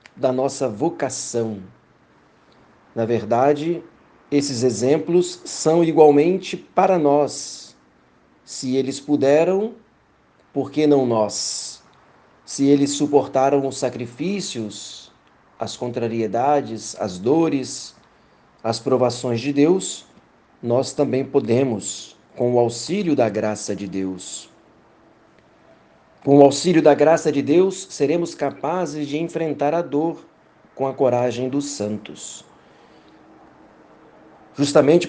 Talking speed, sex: 105 wpm, male